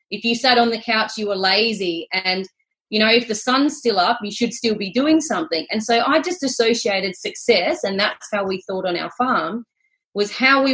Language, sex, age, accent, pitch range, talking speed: English, female, 30-49, Australian, 195-245 Hz, 225 wpm